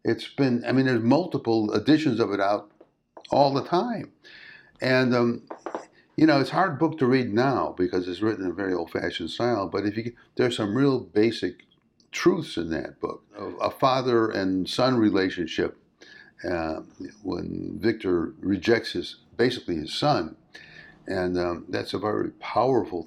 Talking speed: 165 wpm